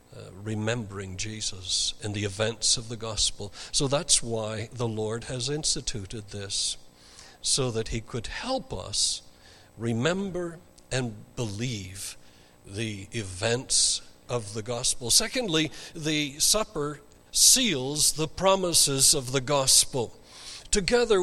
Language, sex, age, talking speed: English, male, 60-79, 115 wpm